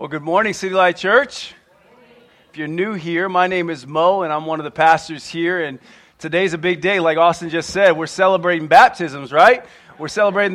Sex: male